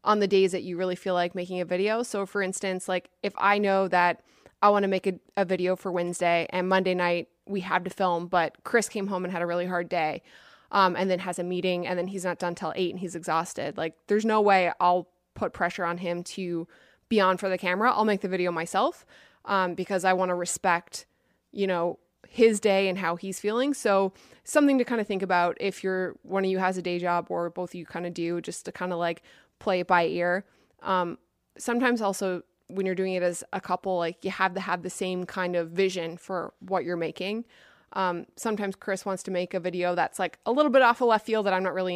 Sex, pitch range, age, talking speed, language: female, 175-200 Hz, 20-39, 245 wpm, English